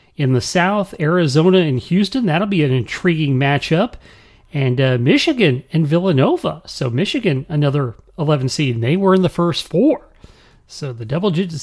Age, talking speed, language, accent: 40-59, 160 wpm, English, American